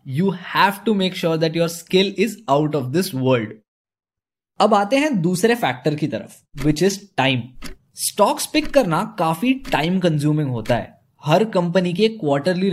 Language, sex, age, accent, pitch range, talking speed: Hindi, male, 20-39, native, 155-205 Hz, 165 wpm